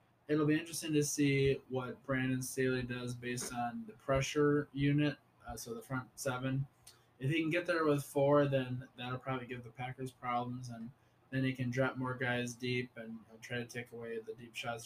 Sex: male